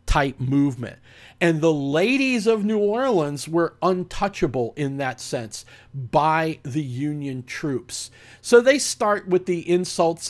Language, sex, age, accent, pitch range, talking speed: English, male, 50-69, American, 140-210 Hz, 135 wpm